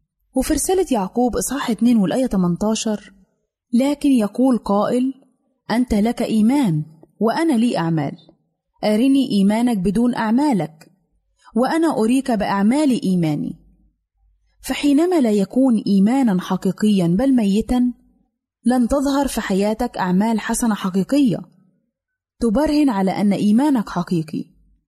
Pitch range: 185-250 Hz